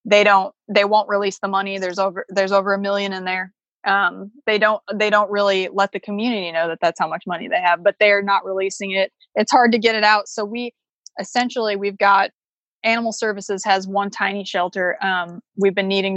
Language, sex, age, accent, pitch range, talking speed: English, female, 20-39, American, 185-210 Hz, 215 wpm